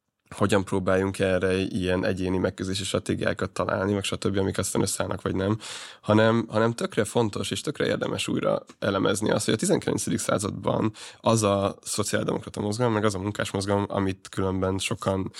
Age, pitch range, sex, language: 20-39, 95-115 Hz, male, Hungarian